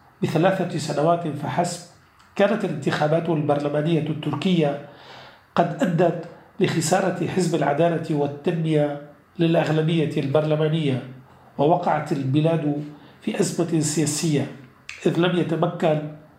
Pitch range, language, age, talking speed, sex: 145-165 Hz, Arabic, 40-59, 85 wpm, male